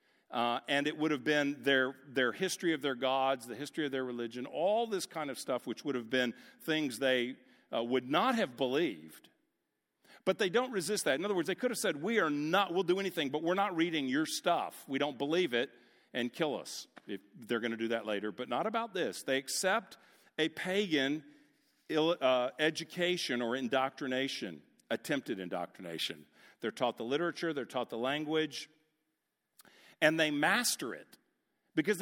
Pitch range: 135-195 Hz